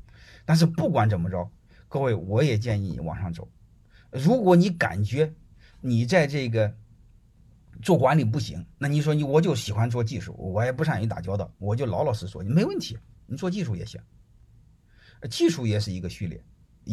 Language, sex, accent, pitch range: Chinese, male, native, 105-140 Hz